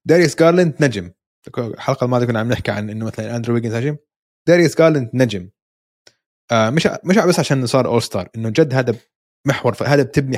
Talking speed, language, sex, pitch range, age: 180 wpm, Arabic, male, 115-155 Hz, 20-39